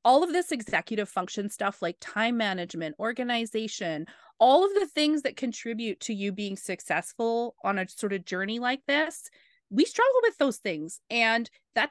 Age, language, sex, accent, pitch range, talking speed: 30-49, English, female, American, 185-245 Hz, 170 wpm